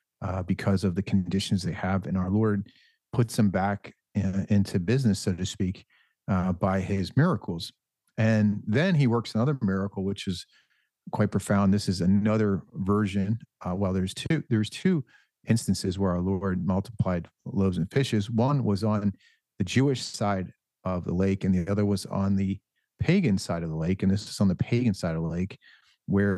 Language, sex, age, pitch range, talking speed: English, male, 40-59, 95-110 Hz, 180 wpm